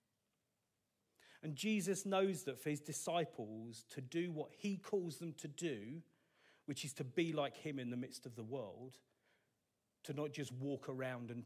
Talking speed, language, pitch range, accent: 175 wpm, English, 125-160 Hz, British